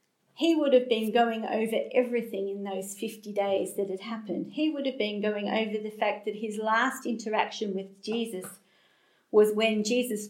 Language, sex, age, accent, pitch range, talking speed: English, female, 40-59, Australian, 200-235 Hz, 180 wpm